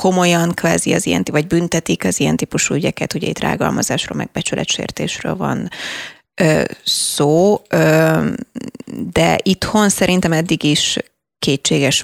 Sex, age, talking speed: female, 20-39, 125 wpm